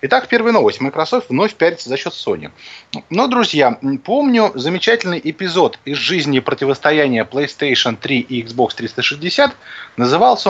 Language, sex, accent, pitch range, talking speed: Russian, male, native, 135-190 Hz, 130 wpm